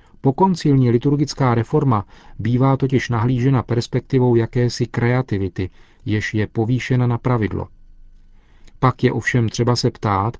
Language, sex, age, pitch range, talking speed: Czech, male, 40-59, 105-140 Hz, 115 wpm